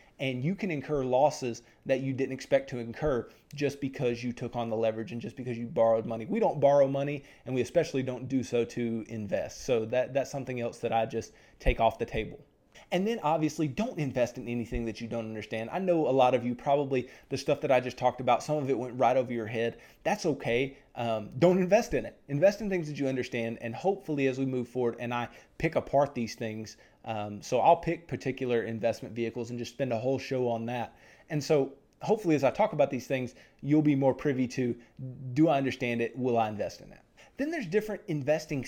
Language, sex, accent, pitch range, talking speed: English, male, American, 120-150 Hz, 230 wpm